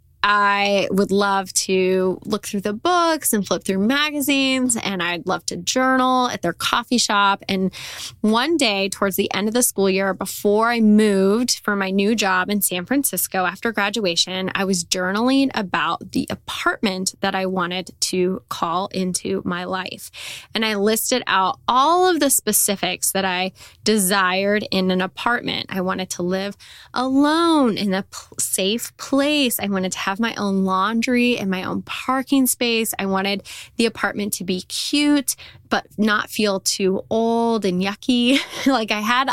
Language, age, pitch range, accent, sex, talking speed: English, 10-29, 190-235 Hz, American, female, 170 wpm